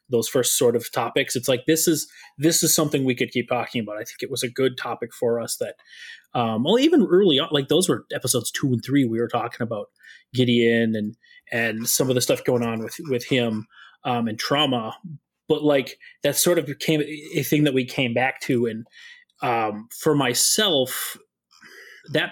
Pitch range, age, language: 120-155 Hz, 30-49, English